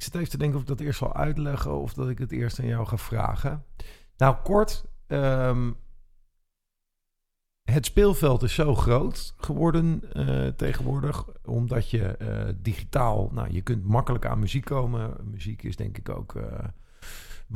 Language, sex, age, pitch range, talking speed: Dutch, male, 50-69, 100-125 Hz, 160 wpm